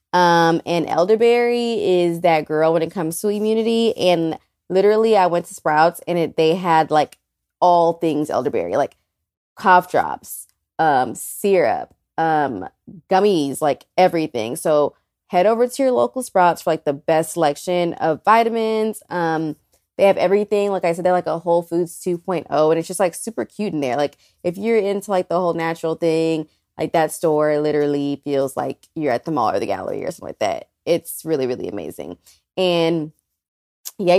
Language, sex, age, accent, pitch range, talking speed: English, female, 20-39, American, 155-190 Hz, 175 wpm